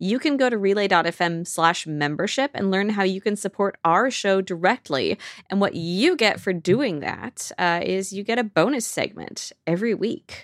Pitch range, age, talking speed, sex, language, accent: 165-240 Hz, 20-39, 185 wpm, female, English, American